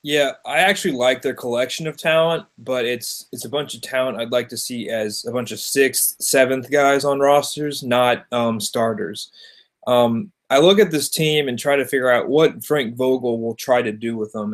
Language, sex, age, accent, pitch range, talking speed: English, male, 20-39, American, 115-135 Hz, 210 wpm